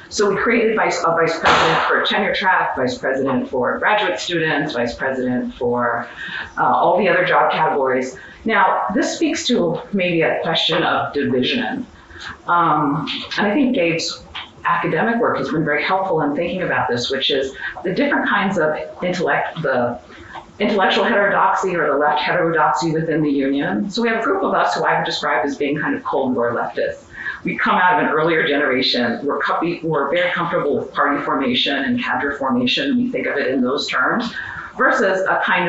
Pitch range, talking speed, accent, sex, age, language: 155-225 Hz, 180 wpm, American, female, 40-59, English